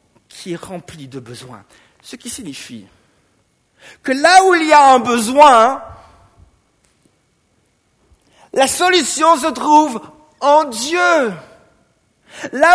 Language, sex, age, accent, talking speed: French, male, 50-69, French, 110 wpm